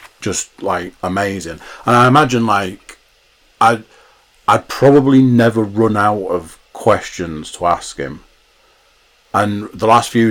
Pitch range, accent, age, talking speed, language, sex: 90-130 Hz, British, 30-49, 130 wpm, English, male